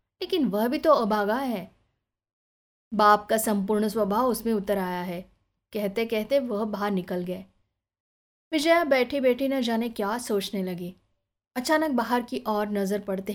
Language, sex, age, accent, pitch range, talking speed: Hindi, female, 20-39, native, 195-255 Hz, 145 wpm